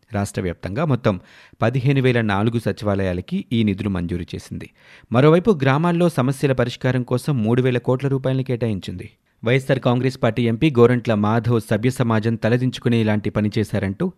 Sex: male